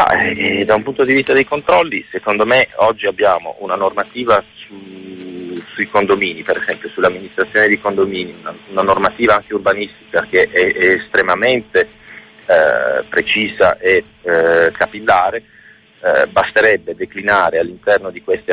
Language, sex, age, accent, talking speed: Italian, male, 30-49, native, 140 wpm